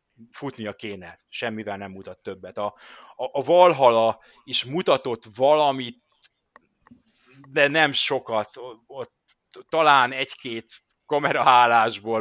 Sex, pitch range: male, 105-130 Hz